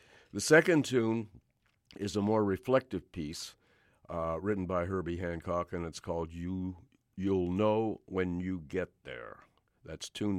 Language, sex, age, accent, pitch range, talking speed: English, male, 60-79, American, 85-100 Hz, 140 wpm